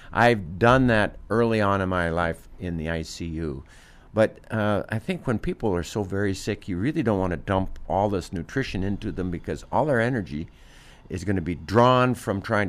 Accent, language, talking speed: American, English, 200 wpm